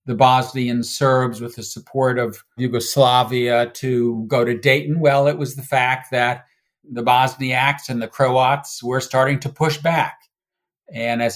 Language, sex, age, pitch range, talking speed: English, male, 50-69, 120-145 Hz, 160 wpm